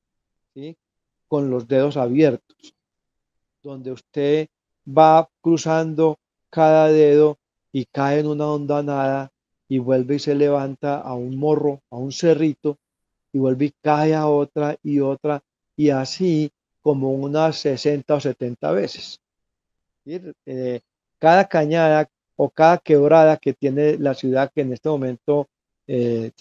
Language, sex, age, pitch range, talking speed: Spanish, male, 40-59, 130-160 Hz, 135 wpm